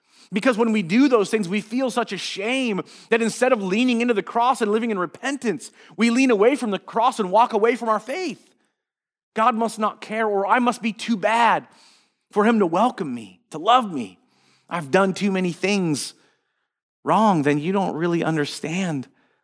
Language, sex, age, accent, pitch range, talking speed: English, male, 30-49, American, 135-215 Hz, 195 wpm